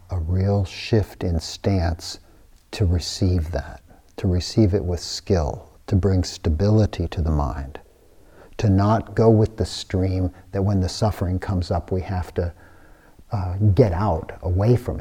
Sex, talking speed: male, 155 wpm